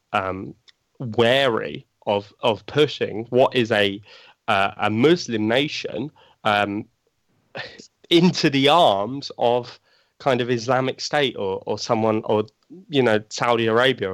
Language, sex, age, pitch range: English, male, 20-39, 100-125 Hz